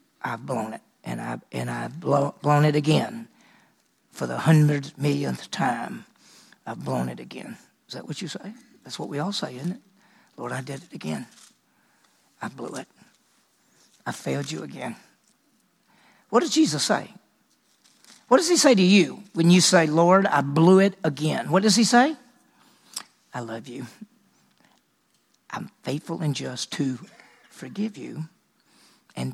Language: English